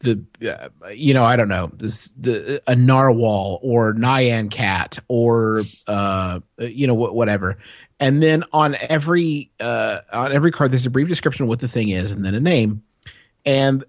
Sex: male